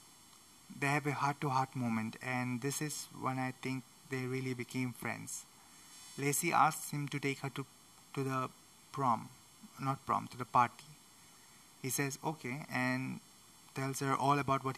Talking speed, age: 160 wpm, 20-39